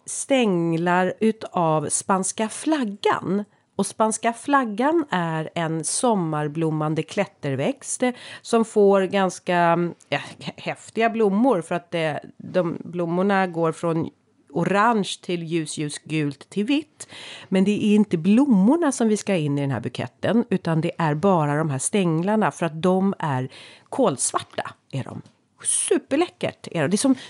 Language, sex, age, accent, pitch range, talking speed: Swedish, female, 40-59, native, 160-220 Hz, 135 wpm